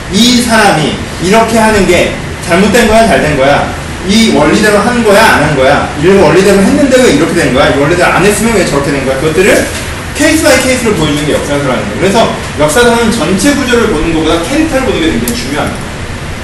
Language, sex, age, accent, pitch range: Korean, male, 30-49, native, 145-230 Hz